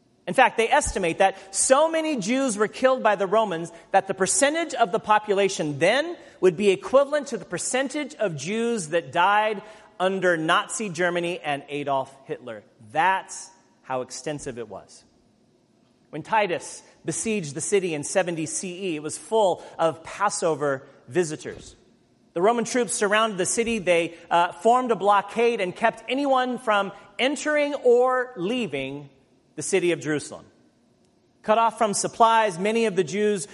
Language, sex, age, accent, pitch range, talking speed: English, male, 40-59, American, 160-225 Hz, 150 wpm